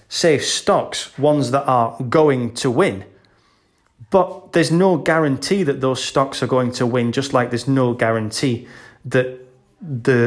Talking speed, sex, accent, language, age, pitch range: 150 wpm, male, British, English, 30-49, 125-170 Hz